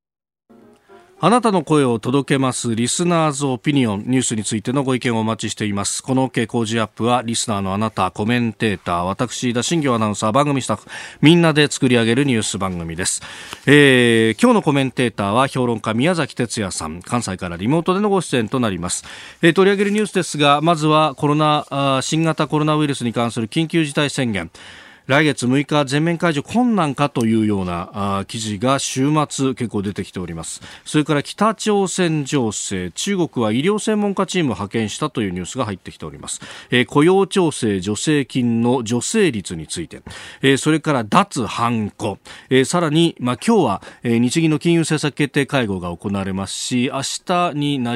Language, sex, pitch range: Japanese, male, 110-150 Hz